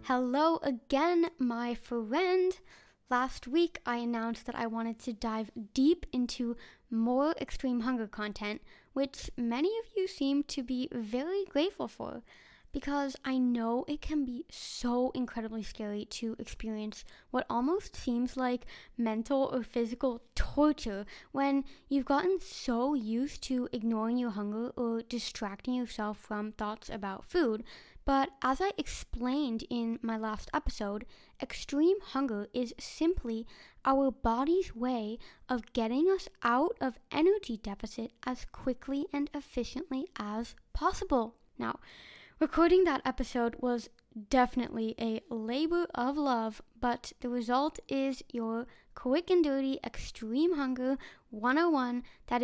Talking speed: 130 wpm